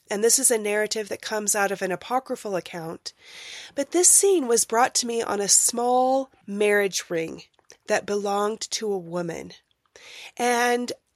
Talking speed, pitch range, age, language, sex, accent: 160 wpm, 195-260 Hz, 20-39, English, female, American